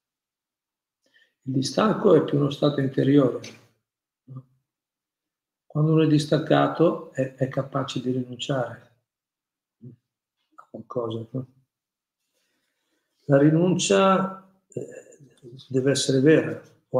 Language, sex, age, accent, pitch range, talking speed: Italian, male, 50-69, native, 125-145 Hz, 90 wpm